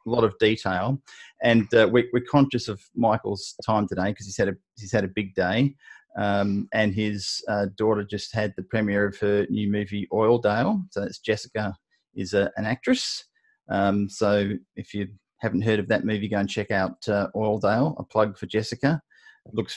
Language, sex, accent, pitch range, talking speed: English, male, Australian, 105-120 Hz, 195 wpm